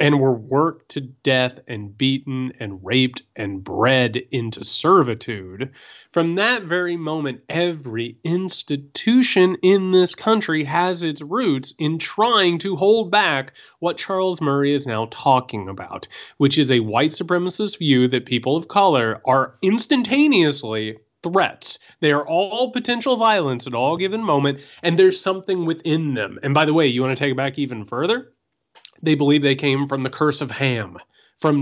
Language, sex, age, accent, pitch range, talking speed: English, male, 30-49, American, 125-180 Hz, 165 wpm